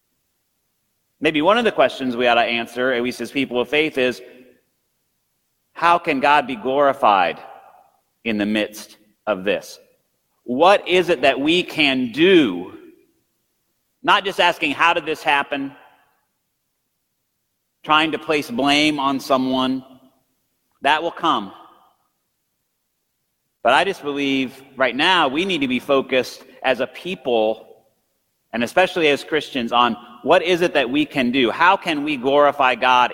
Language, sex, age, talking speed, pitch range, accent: English, male, 40-59, 145 wpm, 130-175 Hz, American